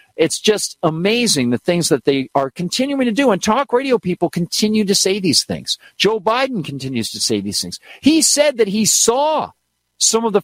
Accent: American